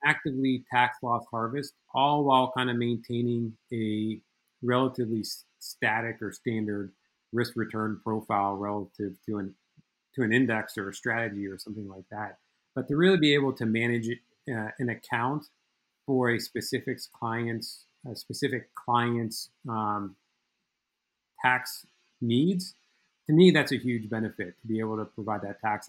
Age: 40-59